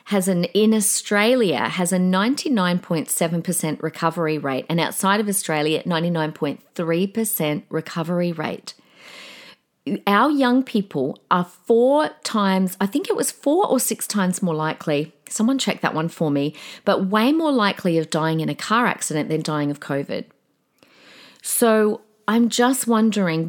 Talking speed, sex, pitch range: 145 wpm, female, 165-220 Hz